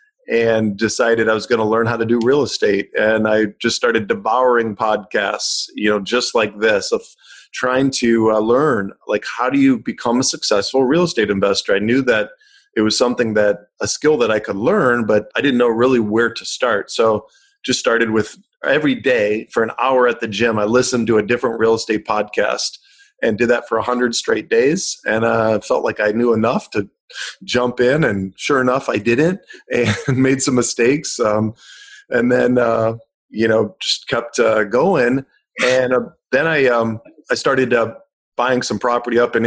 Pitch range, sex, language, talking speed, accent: 110-130 Hz, male, English, 195 wpm, American